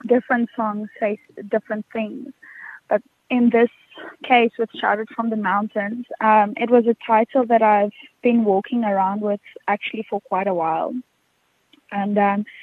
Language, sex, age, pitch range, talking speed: English, female, 20-39, 205-235 Hz, 150 wpm